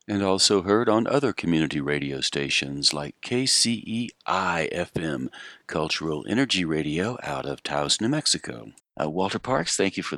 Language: English